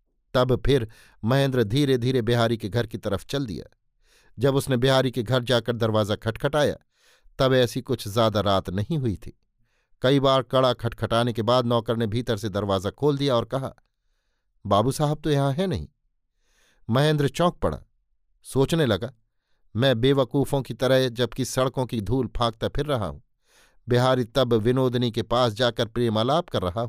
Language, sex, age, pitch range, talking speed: Hindi, male, 50-69, 115-140 Hz, 165 wpm